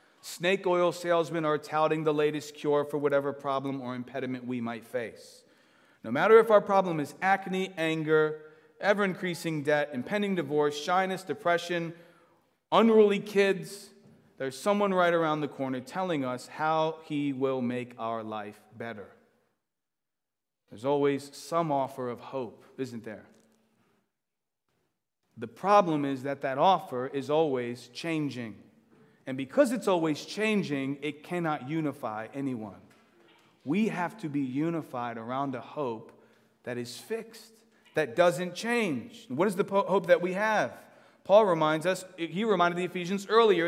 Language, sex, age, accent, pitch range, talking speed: English, male, 40-59, American, 145-210 Hz, 140 wpm